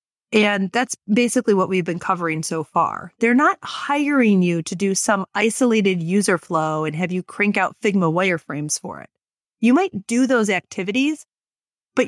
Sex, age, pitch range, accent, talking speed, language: female, 30-49, 185-240 Hz, American, 170 wpm, English